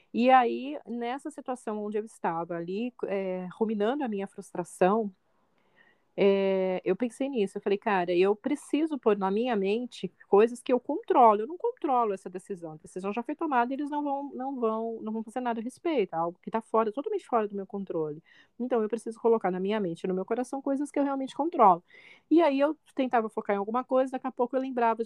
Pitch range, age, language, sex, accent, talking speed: 195-250 Hz, 30-49, Portuguese, female, Brazilian, 215 wpm